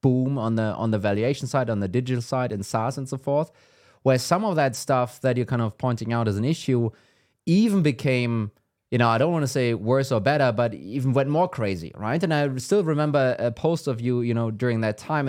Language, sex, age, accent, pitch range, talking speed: English, male, 20-39, German, 115-140 Hz, 240 wpm